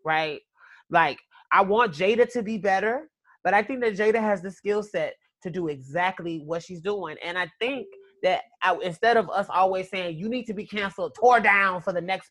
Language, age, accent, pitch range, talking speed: English, 30-49, American, 170-215 Hz, 205 wpm